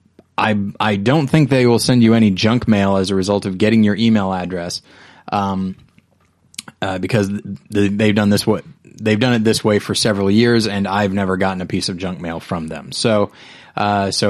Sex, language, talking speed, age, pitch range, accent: male, English, 200 wpm, 20-39, 100-120 Hz, American